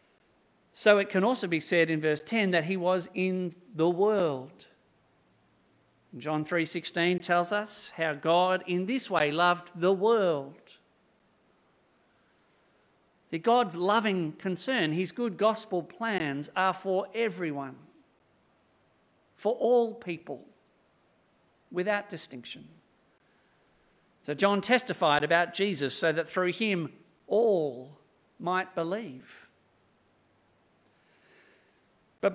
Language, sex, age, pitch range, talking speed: English, male, 50-69, 160-210 Hz, 100 wpm